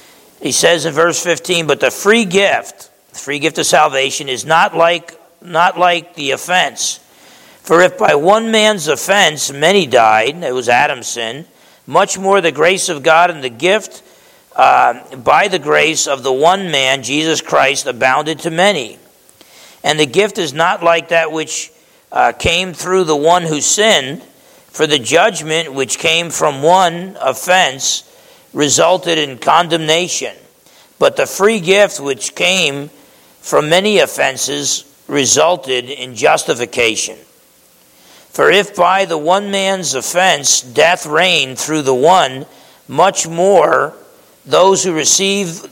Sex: male